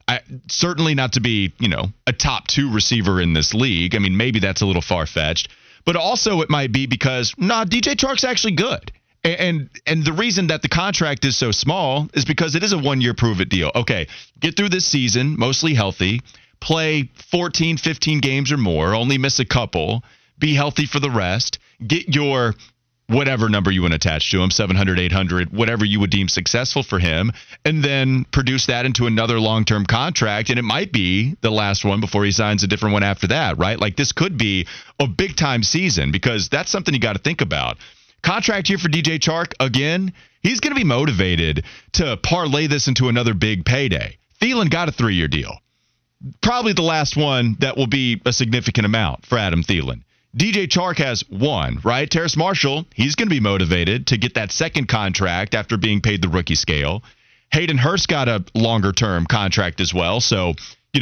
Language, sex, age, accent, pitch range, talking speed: English, male, 30-49, American, 100-150 Hz, 195 wpm